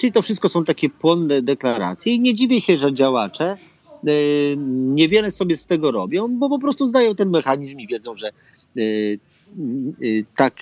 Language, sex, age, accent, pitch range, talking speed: Polish, male, 40-59, native, 110-170 Hz, 160 wpm